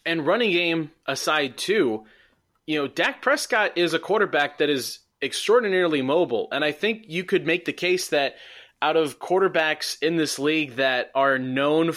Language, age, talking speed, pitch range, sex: English, 20-39, 170 wpm, 135-165 Hz, male